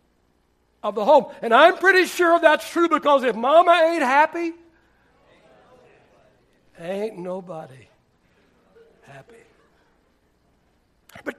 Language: English